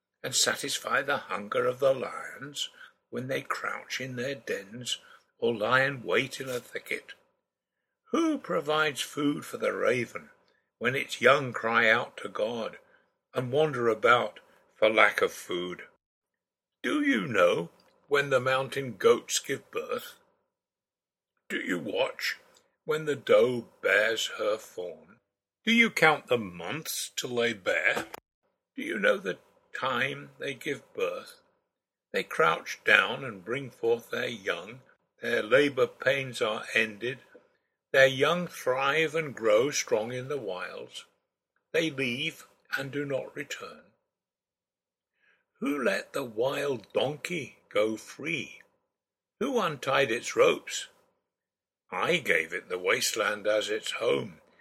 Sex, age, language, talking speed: male, 60-79, English, 135 wpm